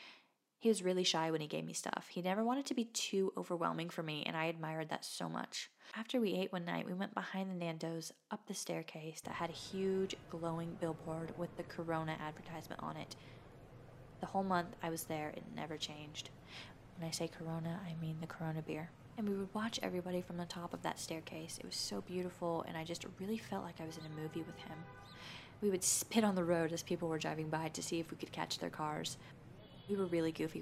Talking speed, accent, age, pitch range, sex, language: 235 wpm, American, 20-39, 160-195 Hz, female, English